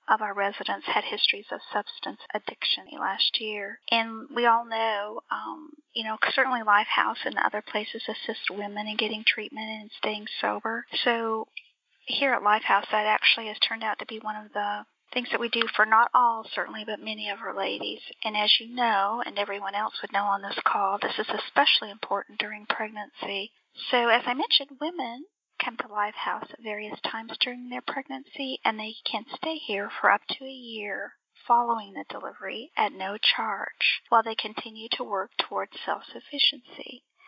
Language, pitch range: English, 210-250 Hz